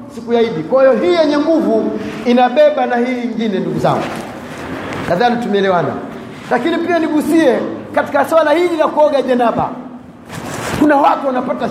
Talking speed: 145 wpm